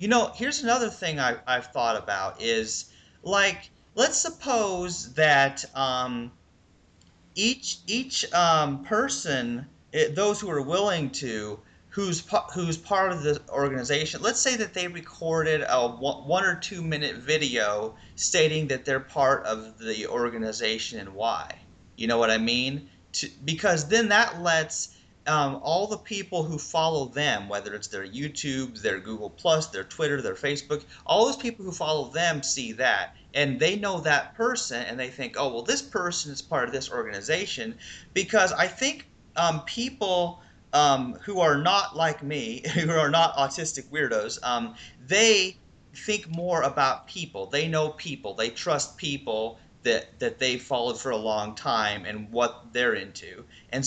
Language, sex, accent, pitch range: English, male, American, 120-180 Hz